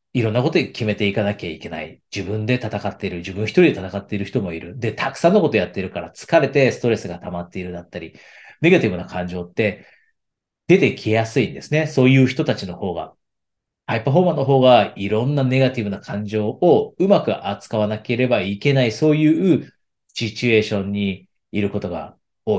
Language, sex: Japanese, male